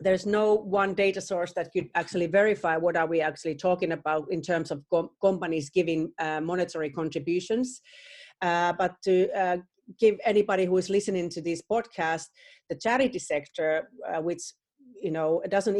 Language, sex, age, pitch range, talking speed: English, female, 40-59, 165-195 Hz, 165 wpm